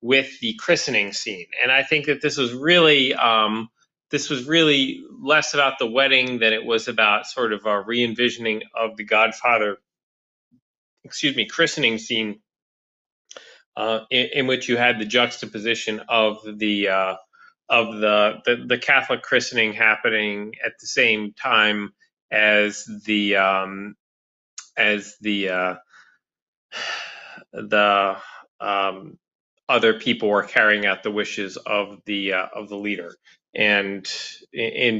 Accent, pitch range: American, 100-125 Hz